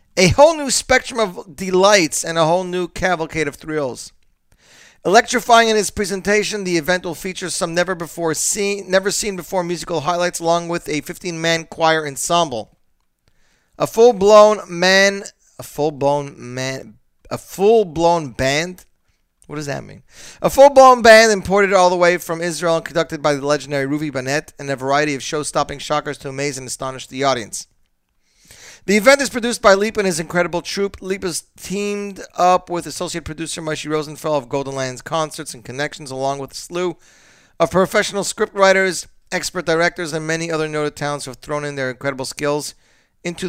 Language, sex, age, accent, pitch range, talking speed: English, male, 40-59, American, 145-190 Hz, 180 wpm